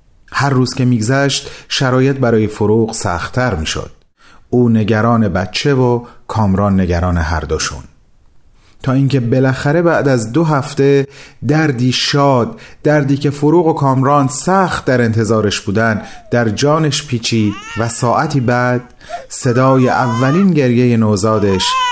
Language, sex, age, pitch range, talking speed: Persian, male, 30-49, 110-150 Hz, 125 wpm